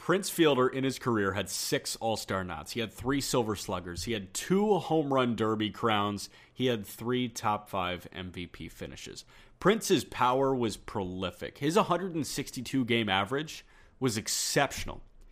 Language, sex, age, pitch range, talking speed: English, male, 30-49, 105-145 Hz, 150 wpm